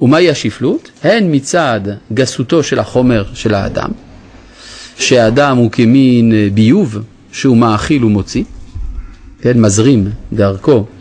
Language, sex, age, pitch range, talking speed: Hebrew, male, 30-49, 105-145 Hz, 105 wpm